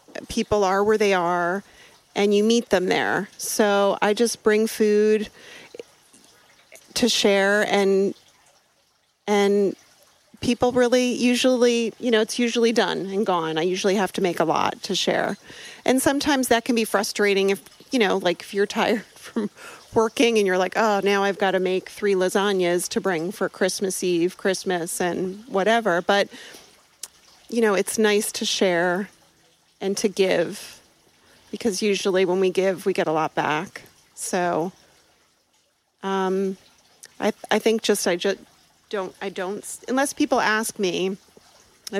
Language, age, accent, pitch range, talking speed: English, 40-59, American, 190-220 Hz, 155 wpm